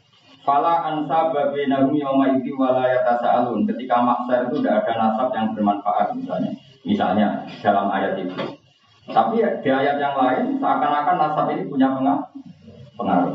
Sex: male